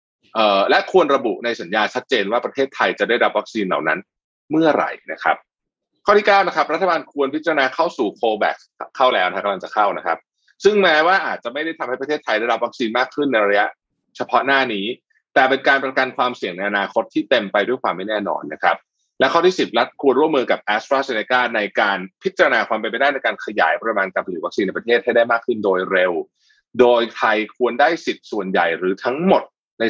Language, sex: Thai, male